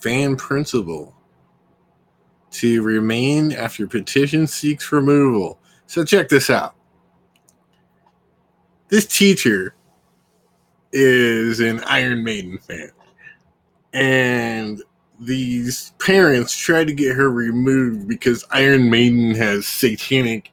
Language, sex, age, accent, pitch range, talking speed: English, male, 20-39, American, 105-145 Hz, 95 wpm